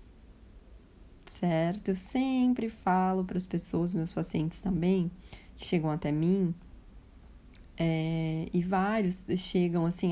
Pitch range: 175-215 Hz